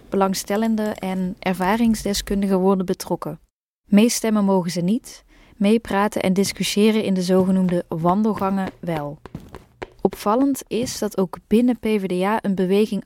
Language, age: Dutch, 20-39